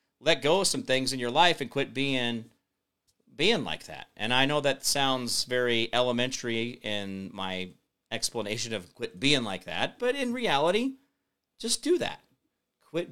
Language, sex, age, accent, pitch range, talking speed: English, male, 40-59, American, 115-155 Hz, 165 wpm